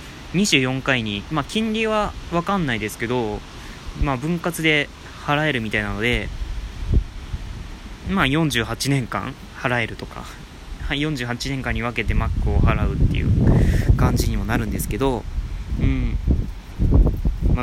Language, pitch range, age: Japanese, 85-140 Hz, 20-39